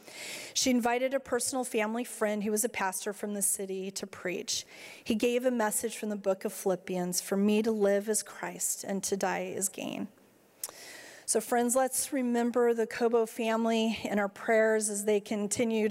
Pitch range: 200-235 Hz